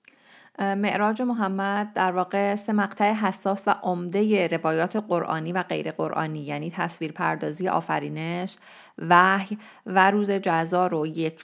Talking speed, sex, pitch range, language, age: 120 wpm, female, 170-200 Hz, Persian, 30-49